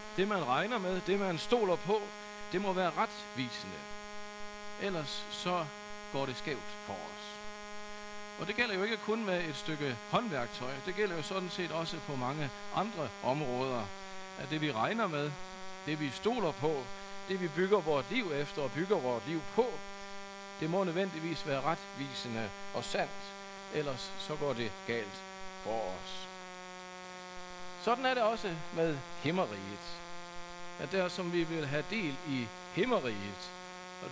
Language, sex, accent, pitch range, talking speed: Danish, male, native, 160-195 Hz, 155 wpm